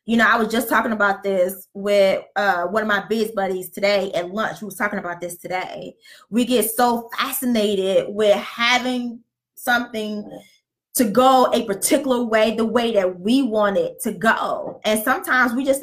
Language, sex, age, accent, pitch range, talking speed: English, female, 20-39, American, 200-270 Hz, 180 wpm